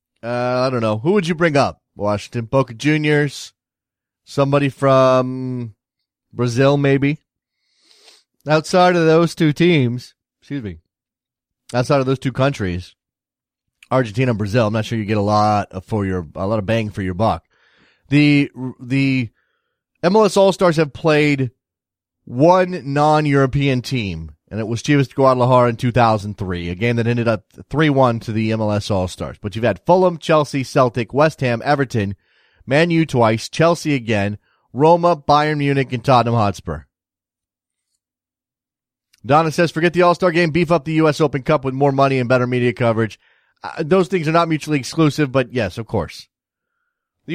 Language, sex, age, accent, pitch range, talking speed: English, male, 30-49, American, 110-150 Hz, 160 wpm